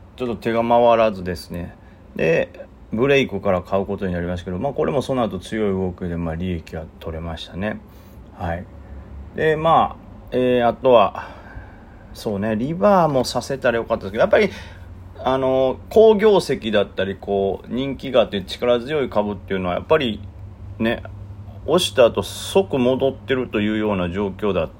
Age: 40-59